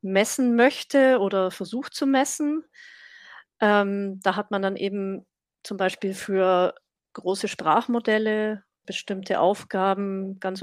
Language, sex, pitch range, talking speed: German, female, 195-245 Hz, 115 wpm